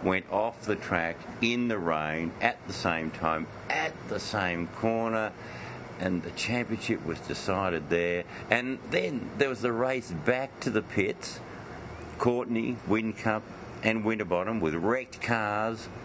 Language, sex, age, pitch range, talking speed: English, male, 60-79, 85-115 Hz, 140 wpm